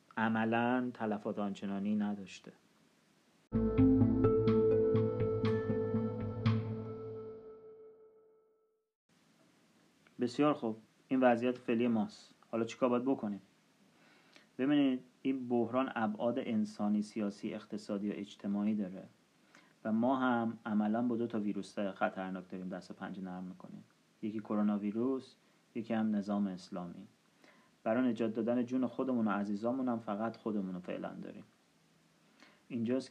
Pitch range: 105-120 Hz